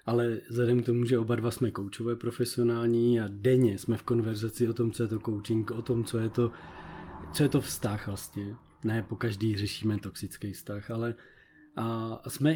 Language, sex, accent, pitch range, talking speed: Czech, male, native, 110-130 Hz, 190 wpm